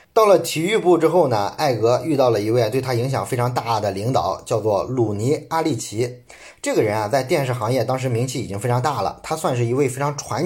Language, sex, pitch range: Chinese, male, 115-150 Hz